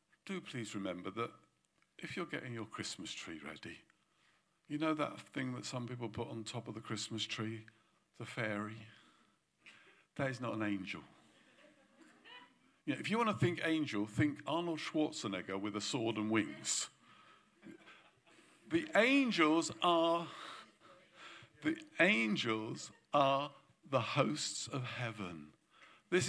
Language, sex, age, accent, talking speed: English, male, 50-69, British, 130 wpm